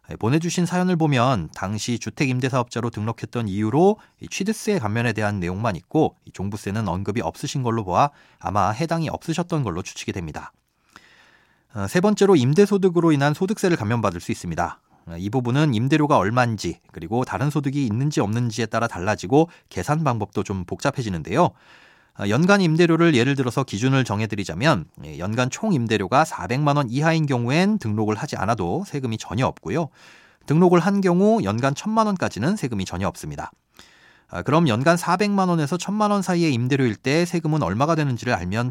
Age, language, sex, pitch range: 30-49, Korean, male, 110-165 Hz